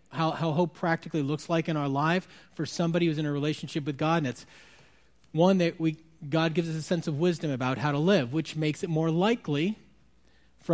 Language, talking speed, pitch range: English, 220 wpm, 115-175 Hz